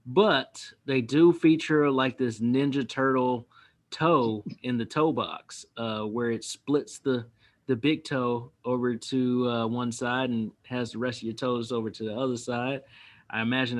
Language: English